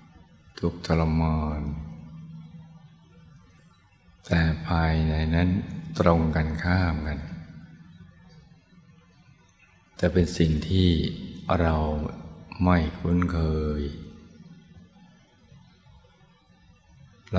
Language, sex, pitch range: Thai, male, 80-85 Hz